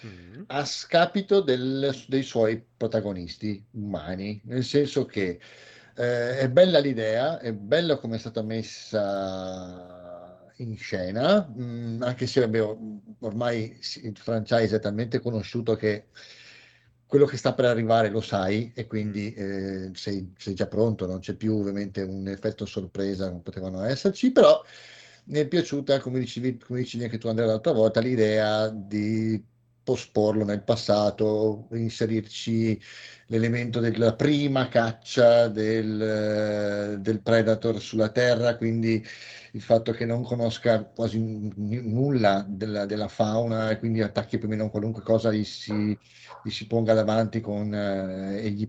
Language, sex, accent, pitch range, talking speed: Italian, male, native, 105-125 Hz, 135 wpm